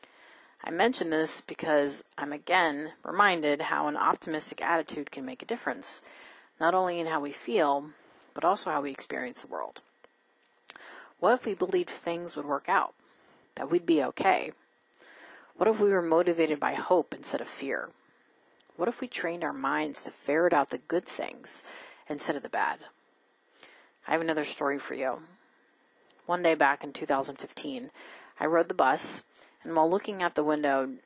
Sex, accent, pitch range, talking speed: female, American, 145-190 Hz, 170 wpm